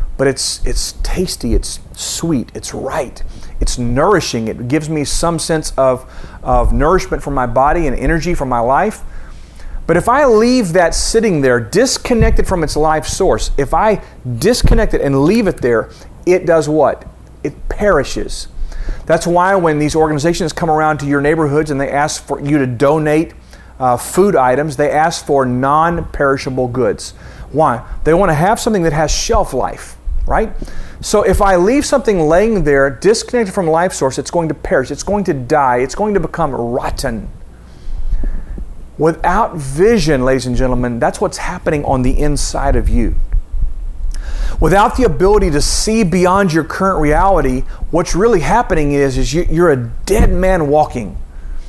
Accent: American